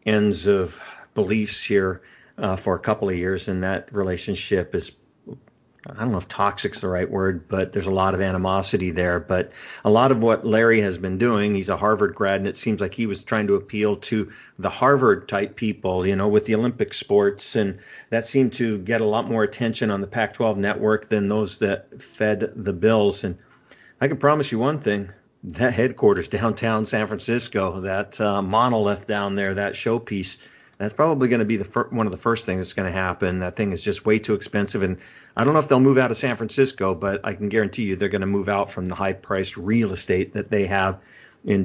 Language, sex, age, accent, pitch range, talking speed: English, male, 50-69, American, 95-110 Hz, 220 wpm